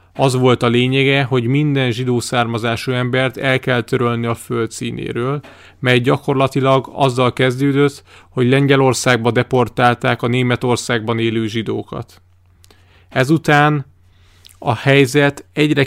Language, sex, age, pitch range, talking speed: Hungarian, male, 30-49, 115-135 Hz, 115 wpm